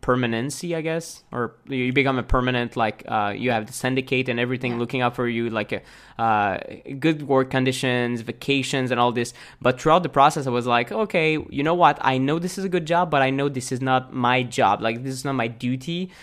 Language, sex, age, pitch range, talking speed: English, male, 20-39, 120-145 Hz, 225 wpm